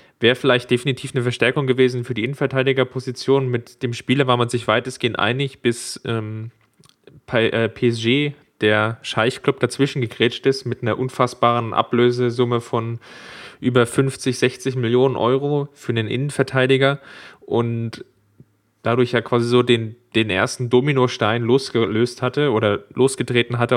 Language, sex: German, male